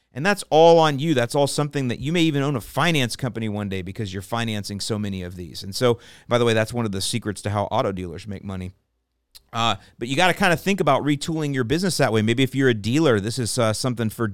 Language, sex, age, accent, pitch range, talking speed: English, male, 30-49, American, 105-135 Hz, 270 wpm